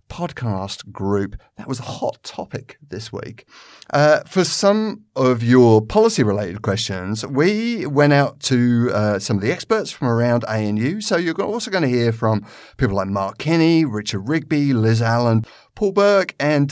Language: English